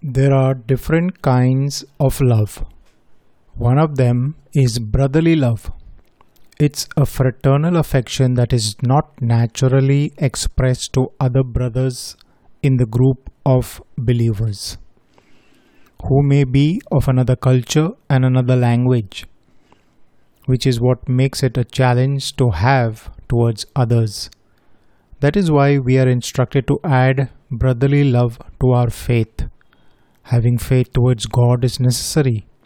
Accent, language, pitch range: native, Hindi, 120-140 Hz